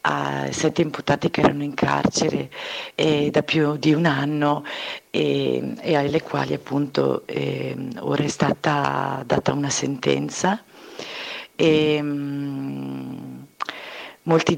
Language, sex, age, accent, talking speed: Italian, female, 40-59, native, 105 wpm